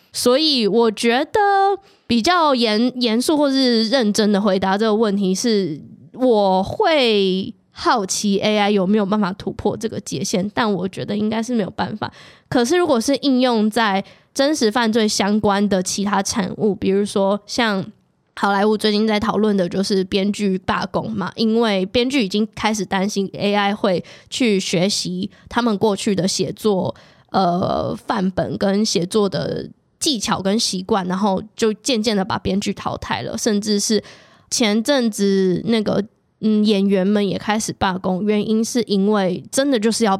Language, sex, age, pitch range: Chinese, female, 20-39, 195-230 Hz